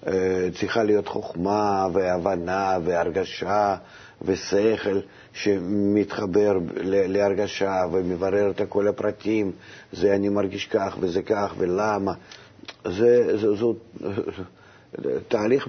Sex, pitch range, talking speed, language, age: male, 100-135 Hz, 90 wpm, Hebrew, 50-69